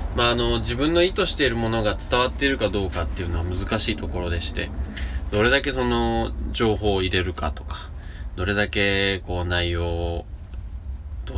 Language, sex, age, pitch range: Japanese, male, 20-39, 80-105 Hz